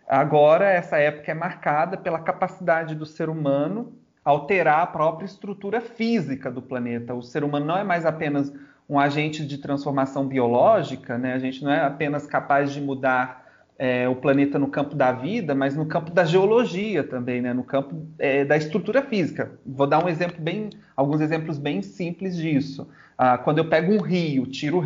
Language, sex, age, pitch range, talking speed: Portuguese, male, 30-49, 135-175 Hz, 170 wpm